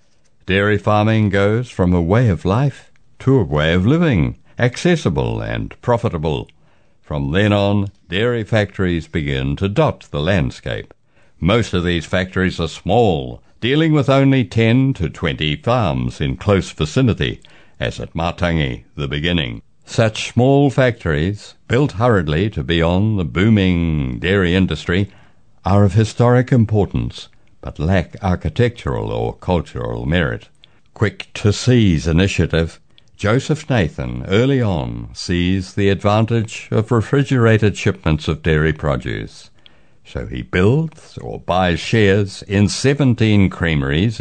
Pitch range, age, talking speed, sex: 85-120 Hz, 60-79, 130 wpm, male